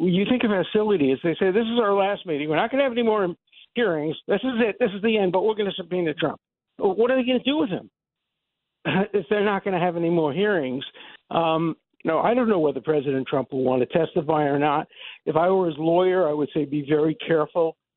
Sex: male